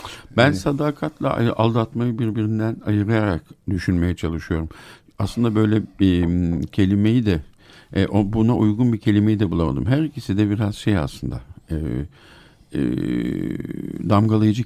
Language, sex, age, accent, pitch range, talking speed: Turkish, male, 50-69, native, 85-110 Hz, 100 wpm